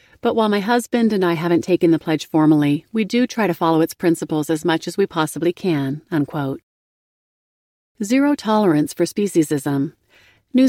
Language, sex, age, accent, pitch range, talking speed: English, female, 40-59, American, 160-205 Hz, 165 wpm